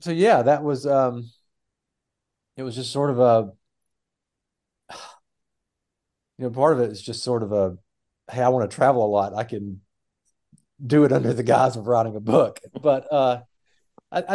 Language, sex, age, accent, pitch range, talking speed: English, male, 40-59, American, 100-130 Hz, 170 wpm